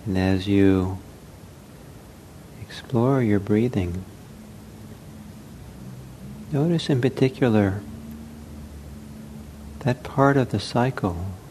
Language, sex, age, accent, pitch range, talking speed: English, male, 50-69, American, 95-115 Hz, 75 wpm